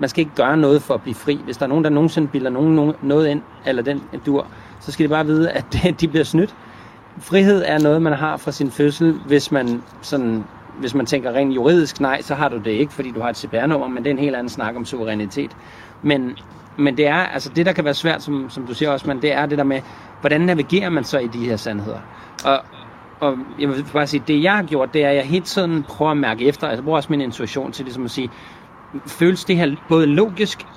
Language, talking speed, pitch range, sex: Danish, 255 wpm, 130-155 Hz, male